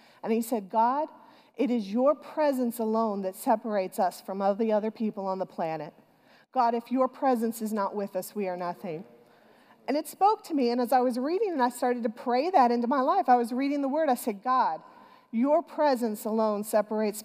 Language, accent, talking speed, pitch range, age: English, American, 215 wpm, 225-280 Hz, 40-59